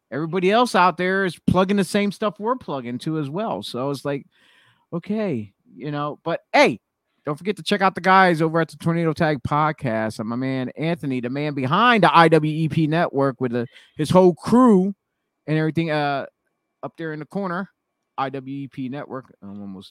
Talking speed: 185 wpm